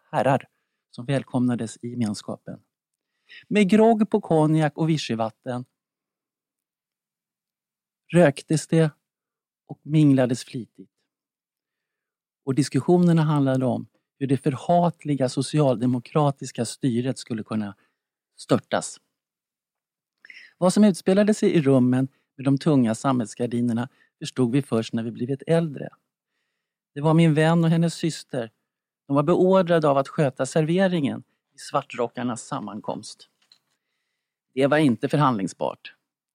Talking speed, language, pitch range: 110 wpm, English, 130-170 Hz